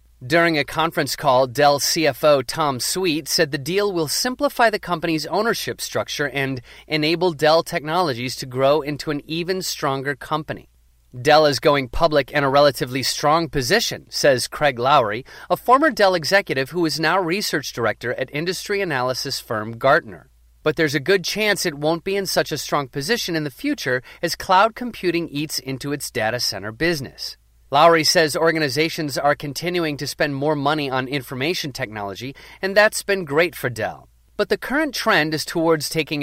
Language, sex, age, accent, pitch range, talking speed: English, male, 30-49, American, 135-170 Hz, 170 wpm